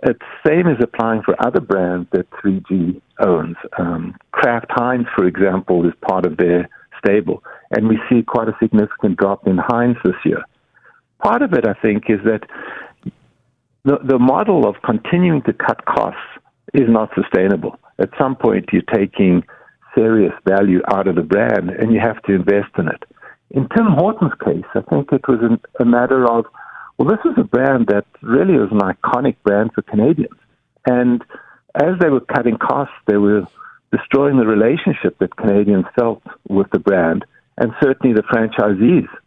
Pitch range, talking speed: 95-120 Hz, 175 wpm